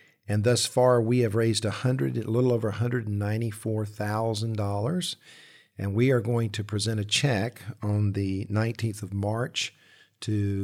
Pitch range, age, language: 105-125 Hz, 50-69, English